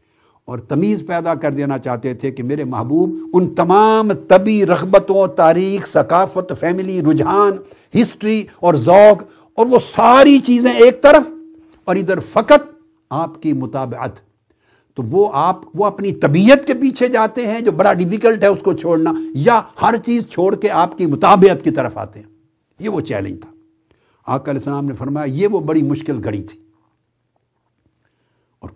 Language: Urdu